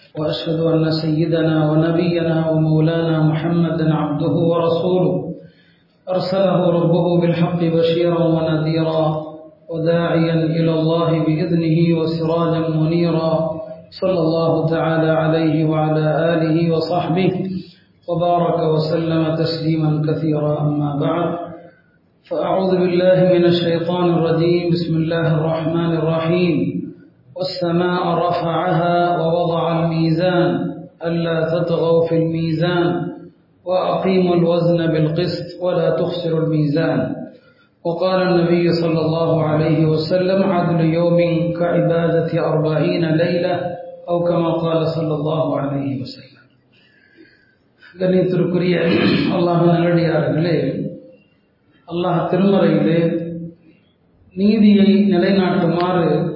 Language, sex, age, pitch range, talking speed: Tamil, male, 40-59, 160-175 Hz, 45 wpm